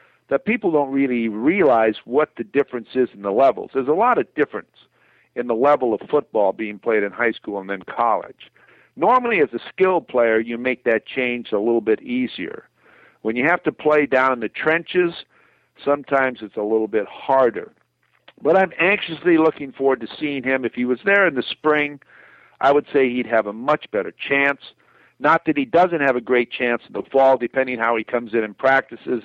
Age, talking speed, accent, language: 50-69, 205 wpm, American, English